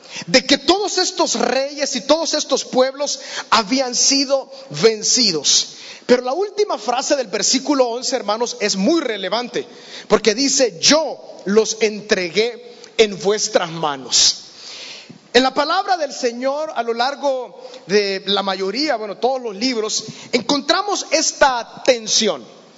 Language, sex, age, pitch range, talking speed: Spanish, male, 40-59, 240-300 Hz, 130 wpm